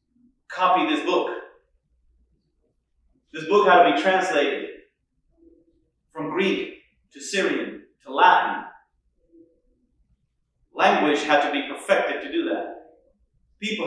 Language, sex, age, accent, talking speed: English, male, 30-49, American, 105 wpm